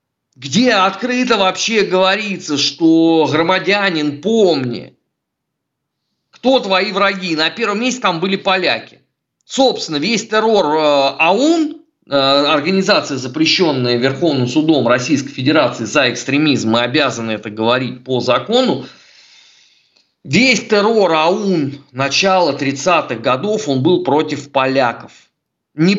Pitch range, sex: 145-210 Hz, male